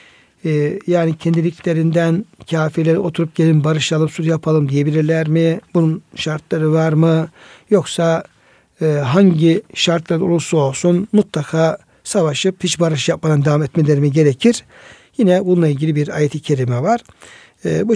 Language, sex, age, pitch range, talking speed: Turkish, male, 60-79, 155-200 Hz, 120 wpm